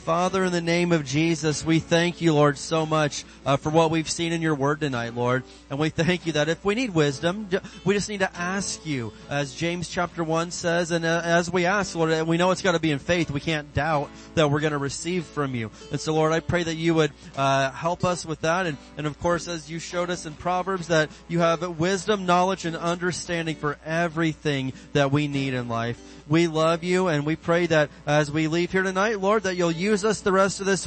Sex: male